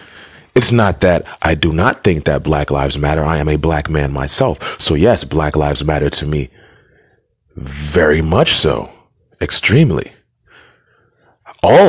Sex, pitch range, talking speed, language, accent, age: male, 75-95 Hz, 145 wpm, English, American, 30-49